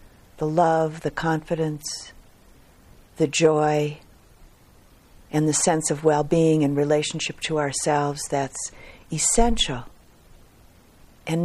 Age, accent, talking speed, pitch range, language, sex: 50-69, American, 95 wpm, 135-165 Hz, English, female